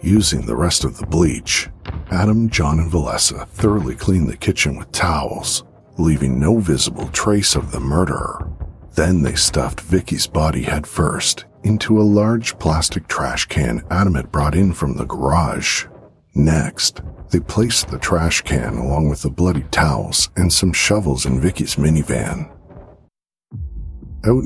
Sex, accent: male, American